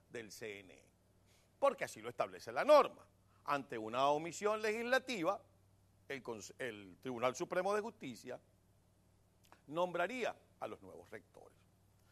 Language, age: Spanish, 50-69